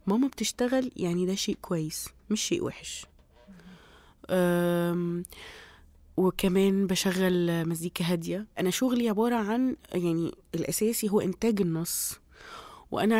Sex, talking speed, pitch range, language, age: female, 105 wpm, 175-215 Hz, Arabic, 20-39